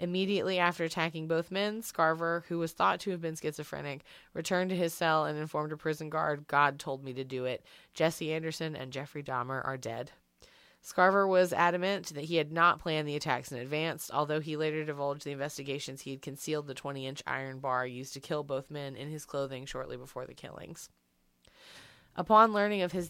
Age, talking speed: 30-49, 195 wpm